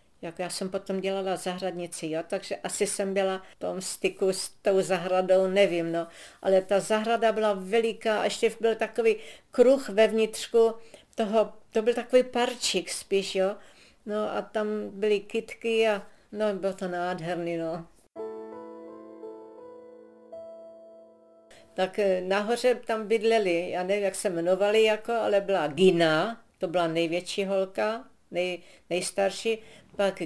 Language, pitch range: Czech, 180-215 Hz